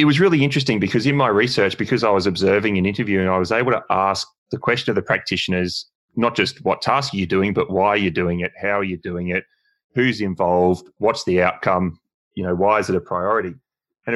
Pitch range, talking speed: 90-120 Hz, 240 wpm